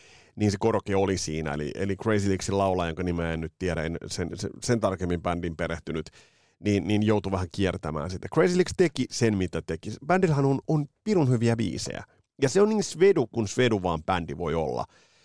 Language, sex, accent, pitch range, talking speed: Finnish, male, native, 95-115 Hz, 195 wpm